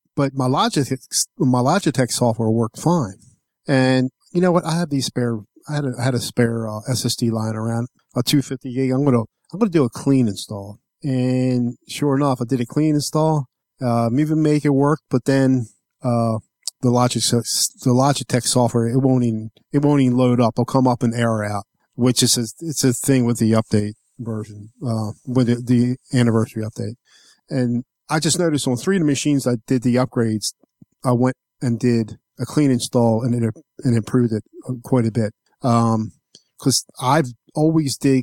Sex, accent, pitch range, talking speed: male, American, 115-140 Hz, 195 wpm